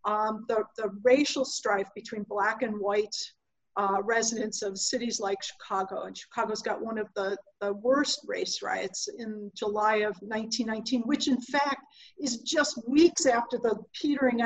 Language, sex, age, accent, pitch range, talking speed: English, female, 50-69, American, 220-260 Hz, 160 wpm